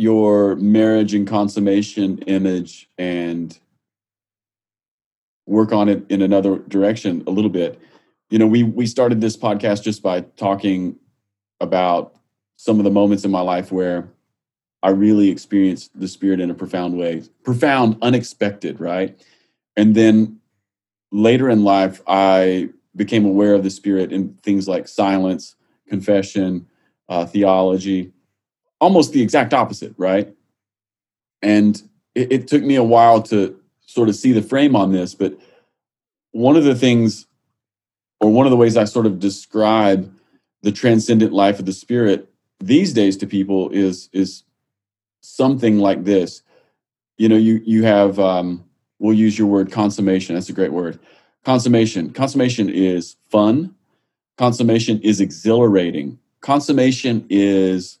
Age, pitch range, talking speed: 30-49, 95-110 Hz, 140 wpm